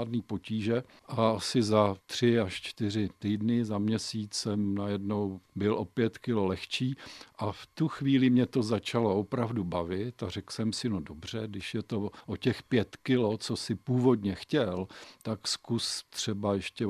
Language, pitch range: Czech, 100-115 Hz